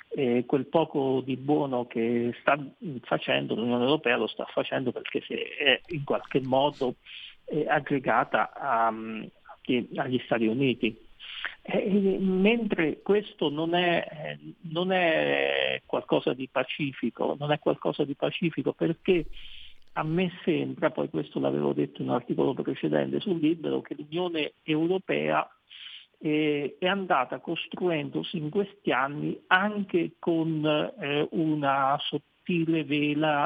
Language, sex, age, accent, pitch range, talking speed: Italian, male, 50-69, native, 130-175 Hz, 115 wpm